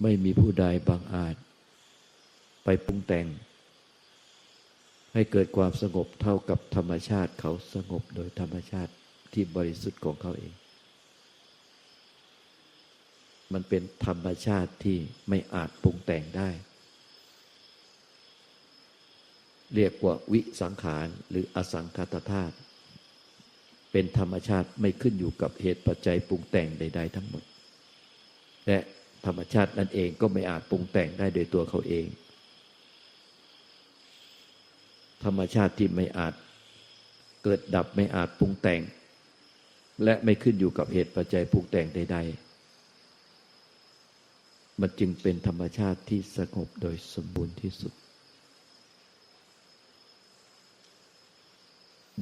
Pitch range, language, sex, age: 85-100 Hz, Thai, male, 60-79